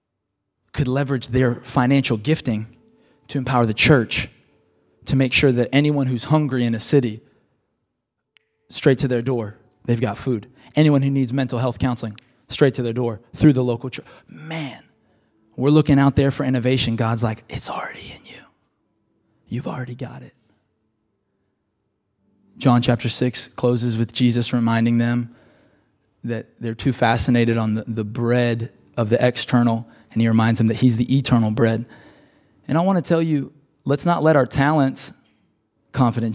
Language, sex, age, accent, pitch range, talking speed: English, male, 20-39, American, 115-130 Hz, 160 wpm